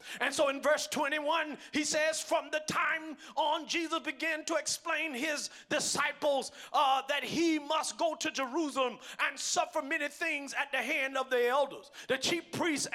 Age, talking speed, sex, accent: 40-59, 170 wpm, male, American